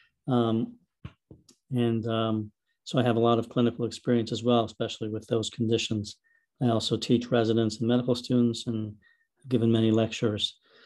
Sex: male